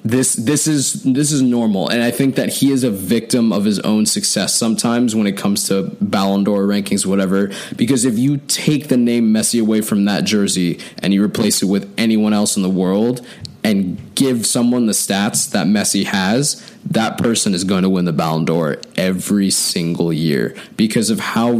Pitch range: 100-145 Hz